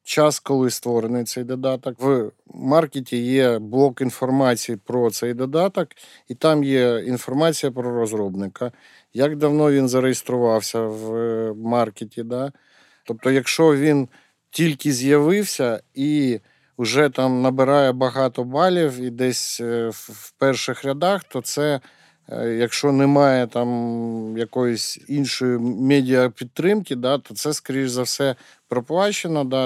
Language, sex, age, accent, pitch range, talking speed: Ukrainian, male, 50-69, native, 120-145 Hz, 115 wpm